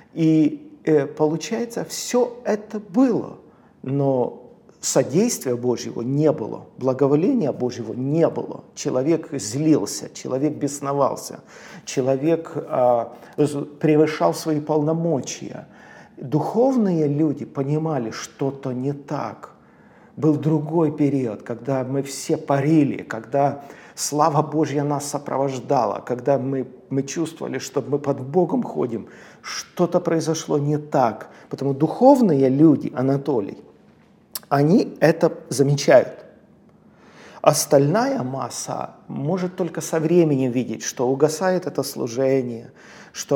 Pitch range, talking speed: 135-160 Hz, 100 wpm